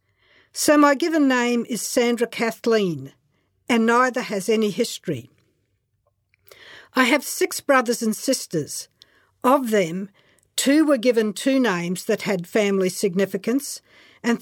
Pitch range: 200-265 Hz